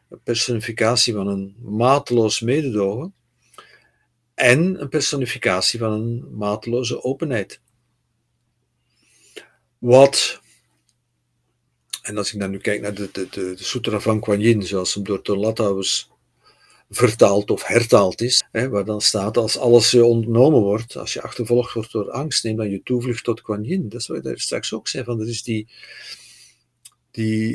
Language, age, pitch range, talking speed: Dutch, 50-69, 110-125 Hz, 155 wpm